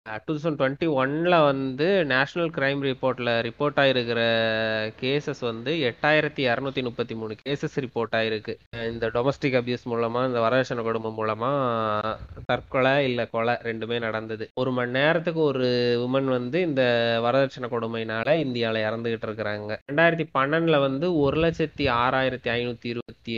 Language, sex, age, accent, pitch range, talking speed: Tamil, male, 20-39, native, 120-150 Hz, 110 wpm